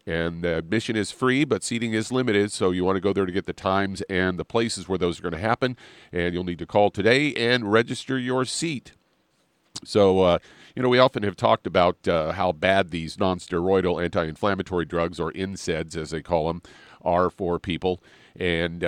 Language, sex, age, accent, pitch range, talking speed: English, male, 40-59, American, 90-105 Hz, 200 wpm